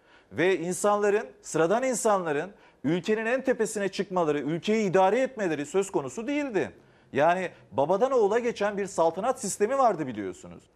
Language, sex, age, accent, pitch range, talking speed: Turkish, male, 40-59, native, 180-235 Hz, 130 wpm